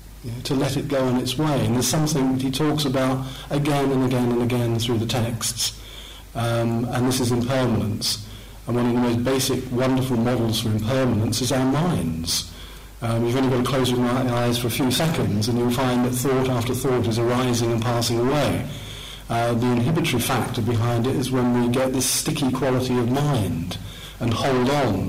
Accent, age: British, 50-69